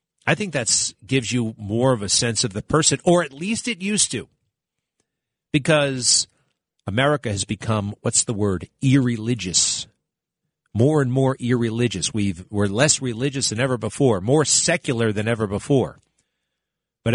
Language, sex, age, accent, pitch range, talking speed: English, male, 50-69, American, 105-150 Hz, 145 wpm